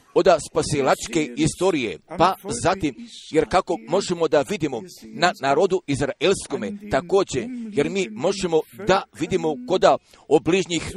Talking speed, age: 115 wpm, 50-69